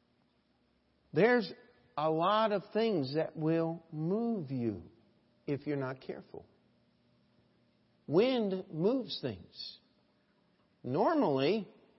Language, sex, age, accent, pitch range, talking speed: English, male, 50-69, American, 145-225 Hz, 85 wpm